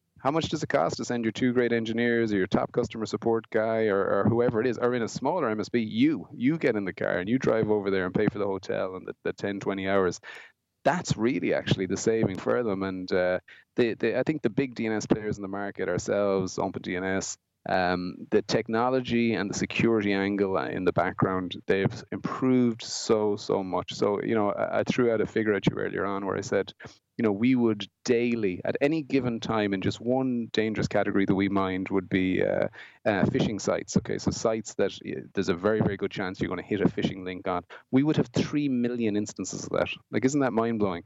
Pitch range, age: 100-120 Hz, 30-49